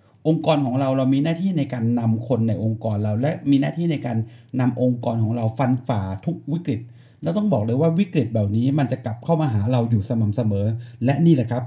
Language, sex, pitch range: Thai, male, 115-140 Hz